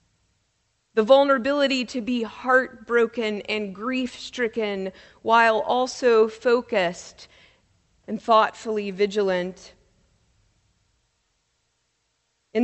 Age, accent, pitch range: 30-49, American, 180-240 Hz